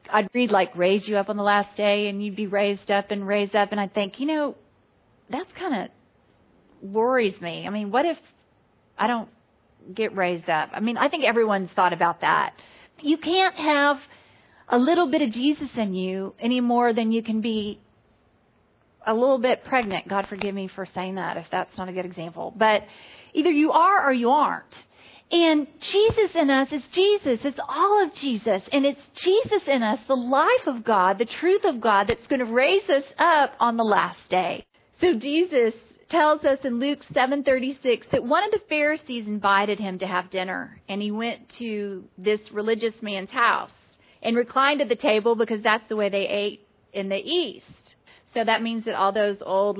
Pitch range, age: 205-285 Hz, 40-59